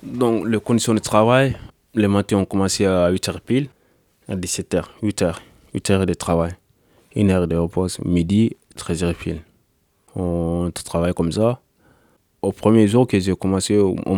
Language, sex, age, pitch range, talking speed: French, male, 20-39, 85-100 Hz, 150 wpm